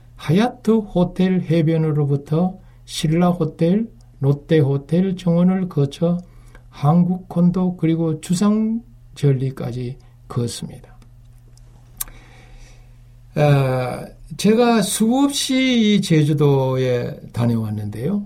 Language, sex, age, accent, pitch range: Korean, male, 60-79, native, 120-175 Hz